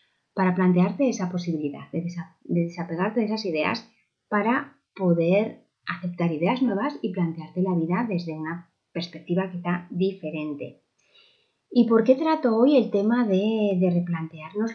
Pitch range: 170-205 Hz